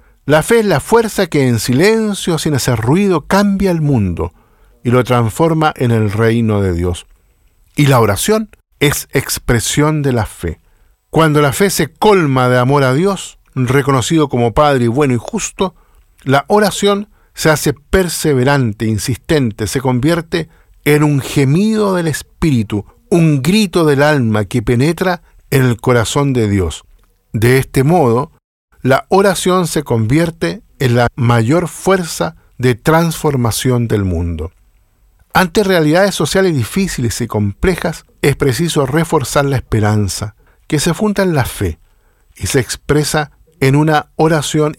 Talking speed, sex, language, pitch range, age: 145 wpm, male, Spanish, 115-165 Hz, 50-69